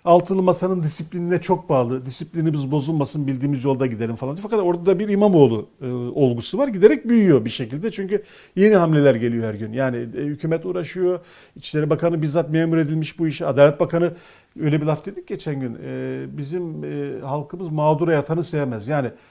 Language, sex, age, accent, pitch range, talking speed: Turkish, male, 50-69, native, 135-185 Hz, 170 wpm